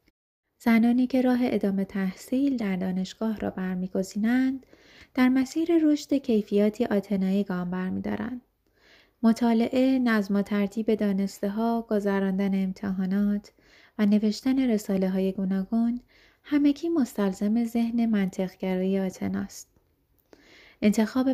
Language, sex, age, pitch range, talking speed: Persian, female, 20-39, 200-235 Hz, 95 wpm